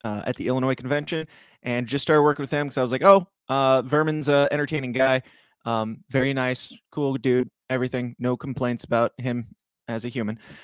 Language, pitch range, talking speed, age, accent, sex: English, 115-140 Hz, 190 wpm, 20-39, American, male